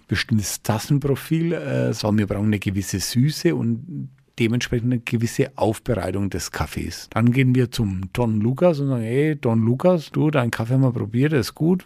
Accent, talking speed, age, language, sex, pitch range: German, 180 wpm, 50-69, German, male, 115-145 Hz